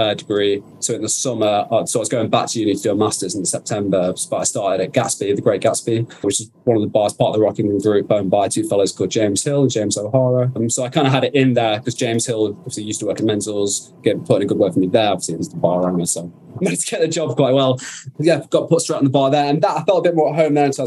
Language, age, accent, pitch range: English, 20-39, British, 110-135 Hz